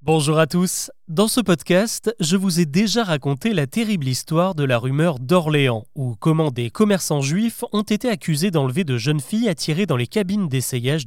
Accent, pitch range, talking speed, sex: French, 140-200 Hz, 190 wpm, male